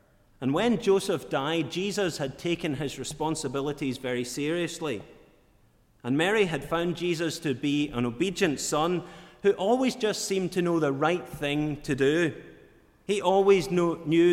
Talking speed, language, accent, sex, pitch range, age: 145 wpm, English, British, male, 125-170 Hz, 30-49